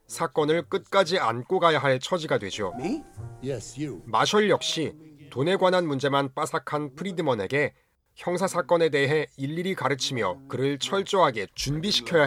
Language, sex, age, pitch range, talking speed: English, male, 40-59, 125-175 Hz, 110 wpm